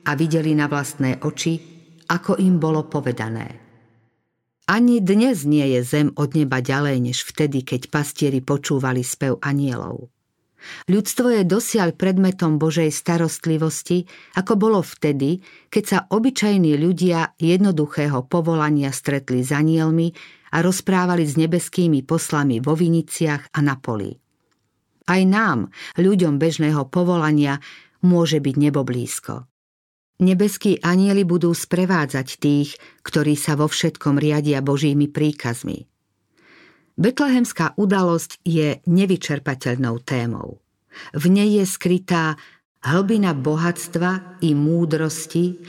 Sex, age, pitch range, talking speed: female, 50-69, 145-180 Hz, 110 wpm